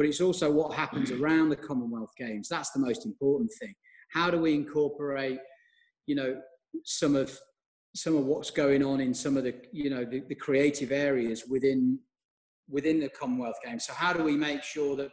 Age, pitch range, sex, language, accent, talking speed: 30-49, 135-175 Hz, male, English, British, 195 wpm